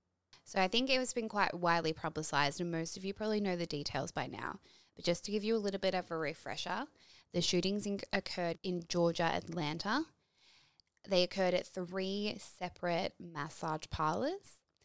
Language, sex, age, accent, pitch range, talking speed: English, female, 10-29, Australian, 160-185 Hz, 175 wpm